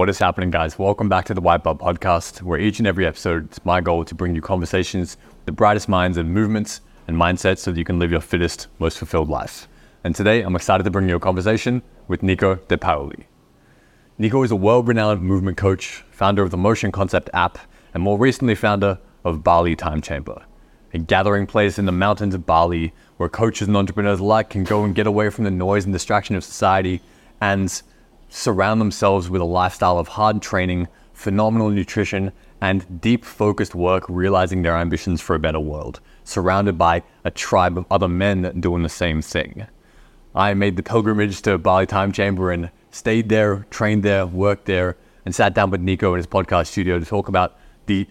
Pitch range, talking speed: 90-105 Hz, 200 wpm